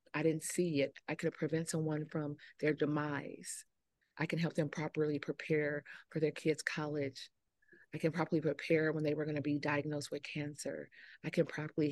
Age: 30-49